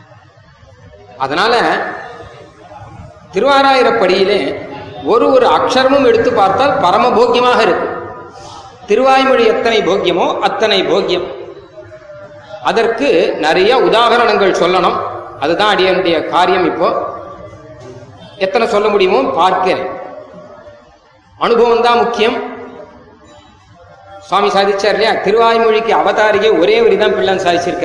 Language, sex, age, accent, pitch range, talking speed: Tamil, male, 30-49, native, 185-255 Hz, 80 wpm